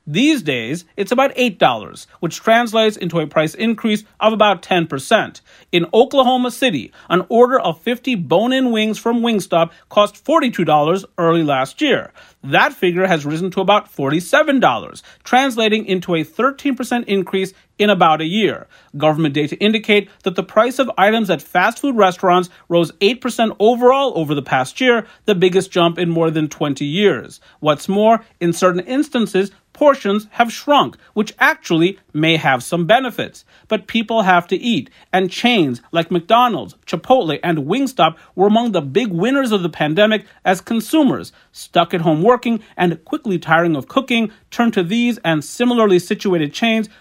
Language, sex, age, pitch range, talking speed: English, male, 40-59, 170-230 Hz, 160 wpm